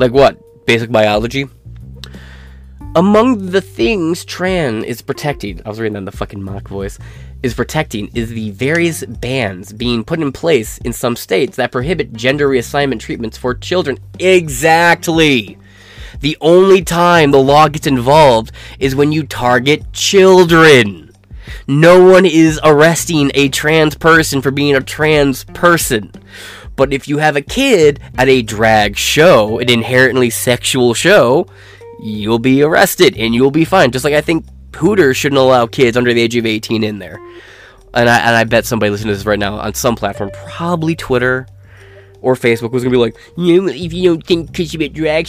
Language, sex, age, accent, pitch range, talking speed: English, male, 20-39, American, 110-155 Hz, 175 wpm